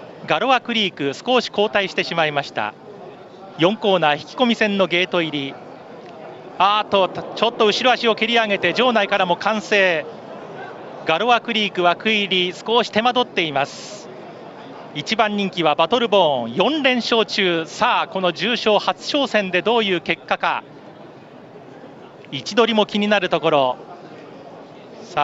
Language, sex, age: Japanese, male, 40-59